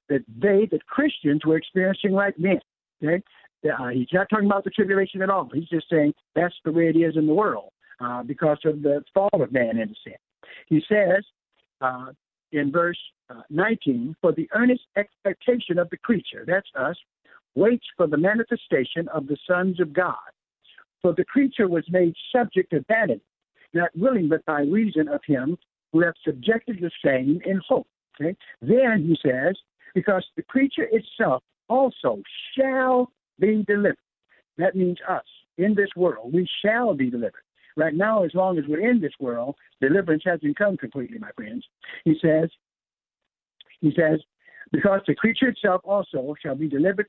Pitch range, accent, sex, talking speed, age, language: 155-210 Hz, American, male, 170 wpm, 60-79, English